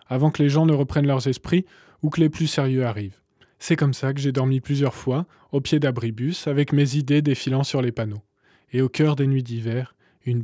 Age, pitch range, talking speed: 20-39, 125-155 Hz, 225 wpm